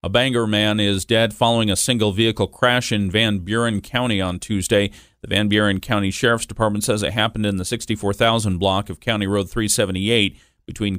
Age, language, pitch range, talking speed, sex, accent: 40-59, English, 95-115 Hz, 185 wpm, male, American